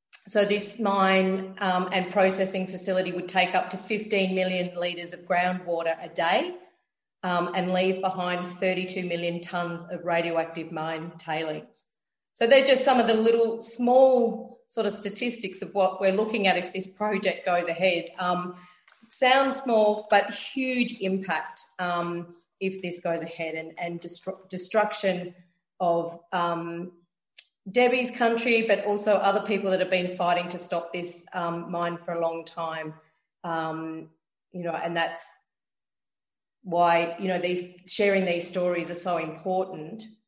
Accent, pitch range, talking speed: Australian, 170-195 Hz, 150 wpm